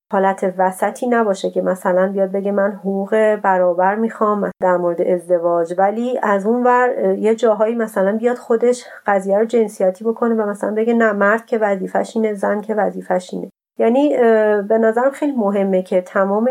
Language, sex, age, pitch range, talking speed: Persian, female, 30-49, 190-225 Hz, 160 wpm